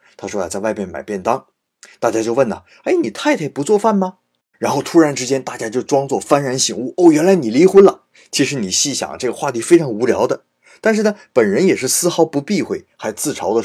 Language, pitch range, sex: Chinese, 125-205 Hz, male